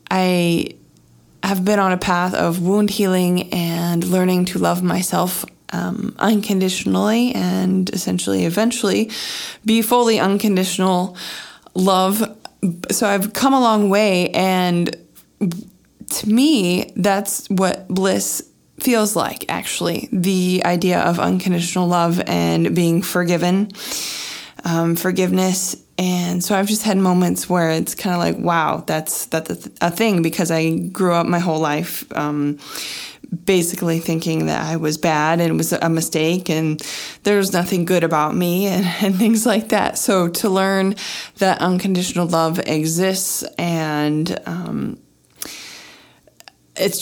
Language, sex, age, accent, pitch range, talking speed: English, female, 20-39, American, 170-200 Hz, 135 wpm